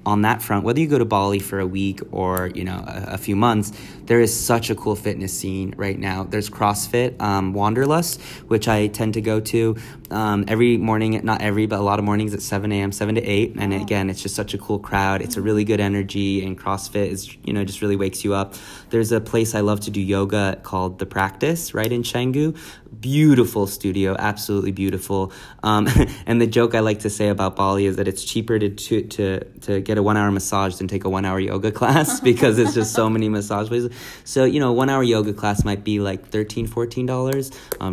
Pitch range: 95-110 Hz